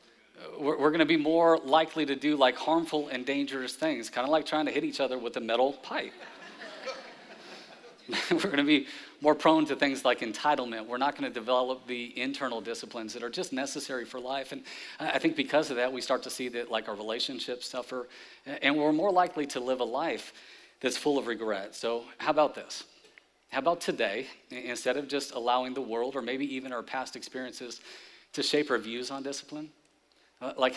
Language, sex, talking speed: English, male, 200 wpm